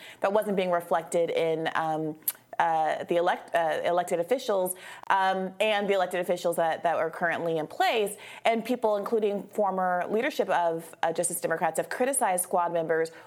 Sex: female